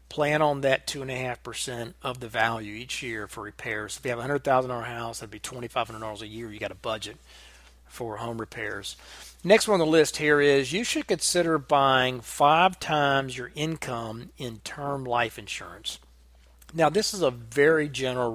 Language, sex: English, male